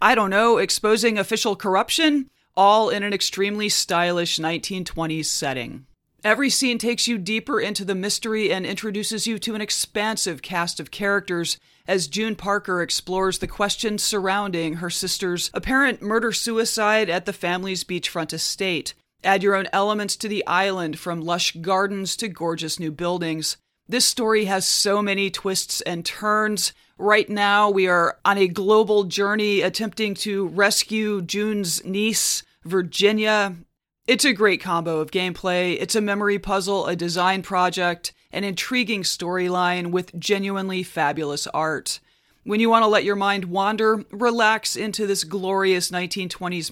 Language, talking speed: English, 150 wpm